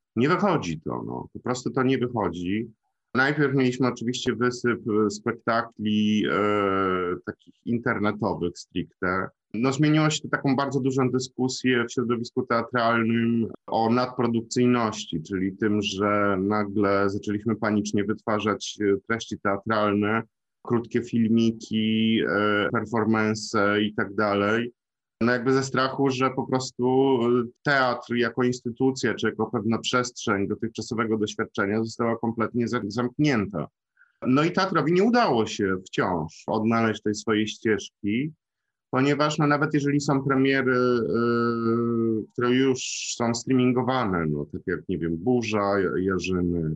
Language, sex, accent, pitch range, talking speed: Polish, male, native, 105-125 Hz, 120 wpm